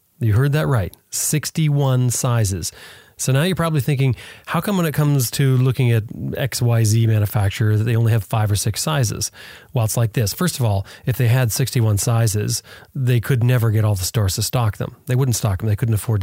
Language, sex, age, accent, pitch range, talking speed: English, male, 30-49, American, 110-135 Hz, 210 wpm